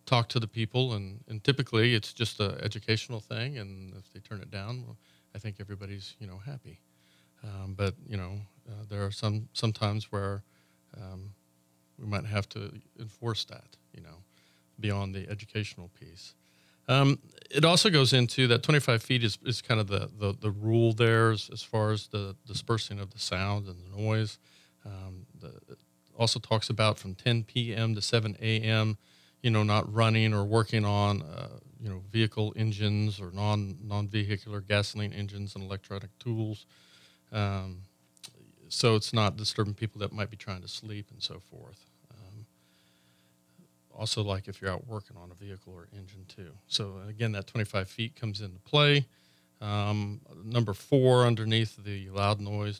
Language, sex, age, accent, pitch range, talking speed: English, male, 40-59, American, 100-115 Hz, 175 wpm